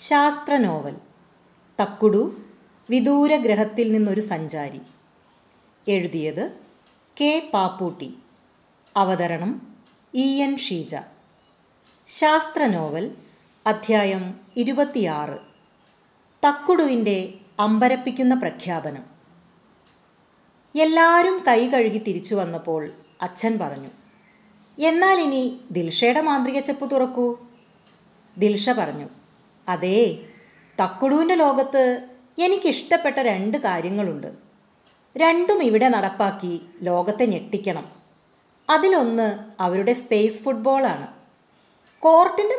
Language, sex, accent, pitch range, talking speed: Malayalam, female, native, 195-280 Hz, 70 wpm